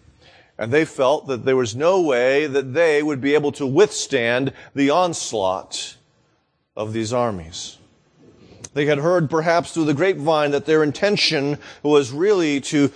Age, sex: 40-59, male